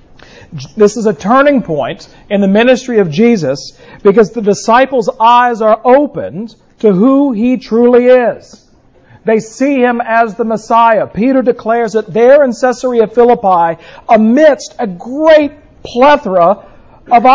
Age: 50-69